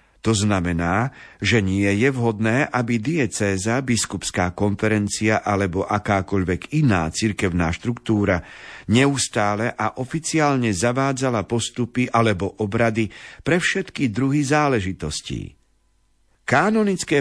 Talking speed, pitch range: 95 wpm, 100-130 Hz